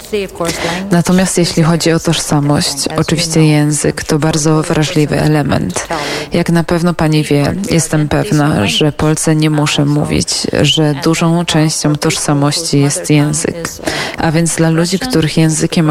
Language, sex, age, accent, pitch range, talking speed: Polish, female, 20-39, native, 150-170 Hz, 130 wpm